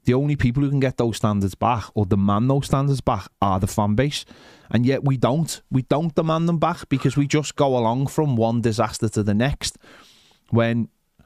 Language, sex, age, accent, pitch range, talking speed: English, male, 20-39, British, 120-160 Hz, 210 wpm